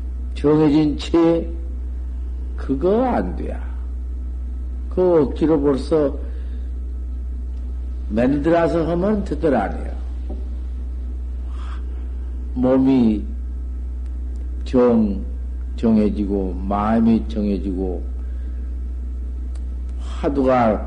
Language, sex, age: Korean, male, 50-69